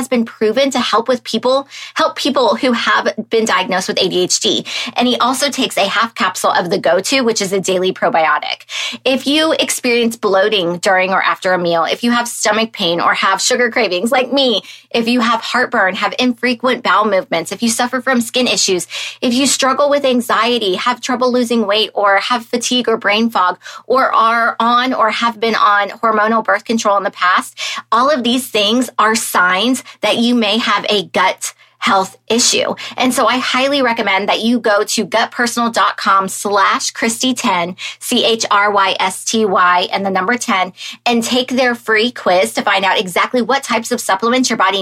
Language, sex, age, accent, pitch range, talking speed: English, female, 20-39, American, 200-250 Hz, 185 wpm